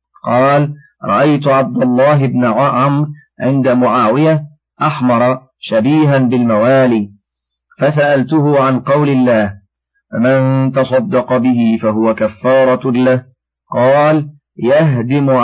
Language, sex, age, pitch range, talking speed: Arabic, male, 40-59, 120-145 Hz, 90 wpm